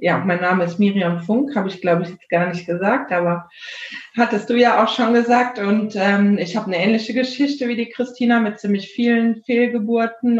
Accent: German